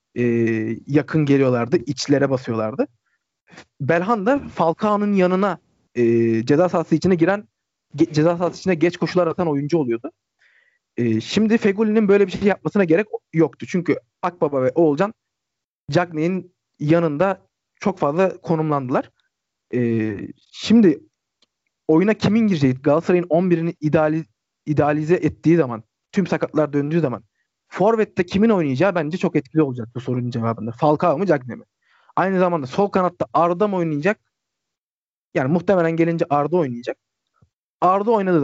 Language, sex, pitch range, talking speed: Turkish, male, 140-185 Hz, 130 wpm